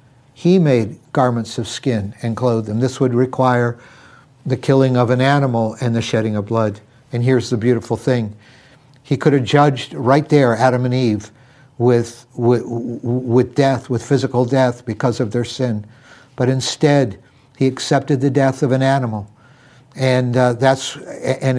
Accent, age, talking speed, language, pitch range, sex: American, 60-79, 165 wpm, English, 120-135 Hz, male